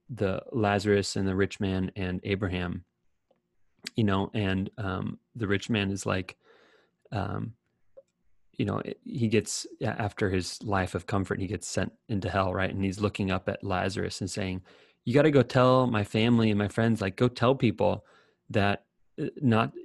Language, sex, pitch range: English, male, 95-115 Hz